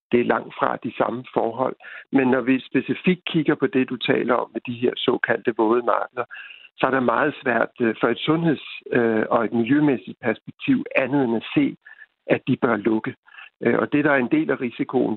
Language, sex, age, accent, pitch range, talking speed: Danish, male, 60-79, native, 125-145 Hz, 200 wpm